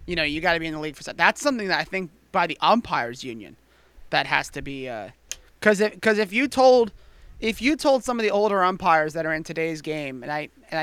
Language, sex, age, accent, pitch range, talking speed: English, male, 30-49, American, 150-190 Hz, 260 wpm